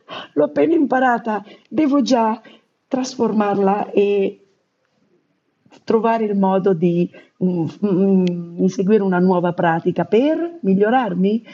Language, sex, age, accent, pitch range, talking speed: Italian, female, 50-69, native, 150-195 Hz, 100 wpm